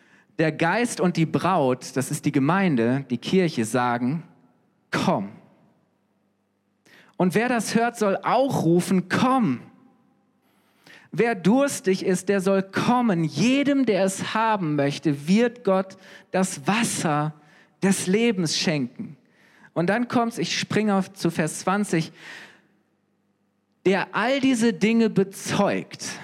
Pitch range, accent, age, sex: 135-195 Hz, German, 40-59, male